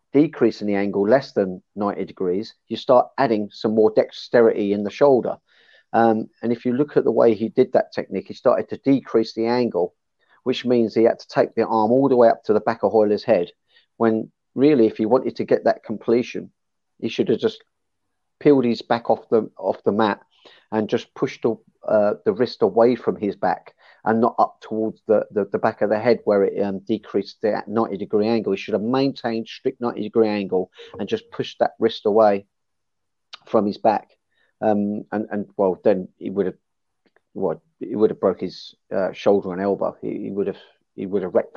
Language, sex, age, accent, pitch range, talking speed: English, male, 40-59, British, 100-115 Hz, 210 wpm